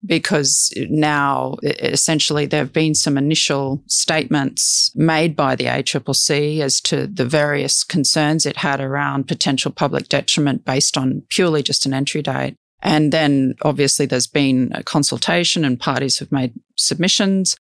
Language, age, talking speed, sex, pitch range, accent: English, 40-59, 145 wpm, female, 130-150 Hz, Australian